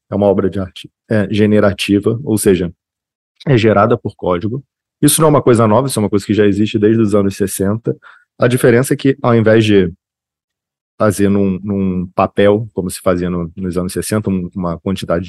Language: Portuguese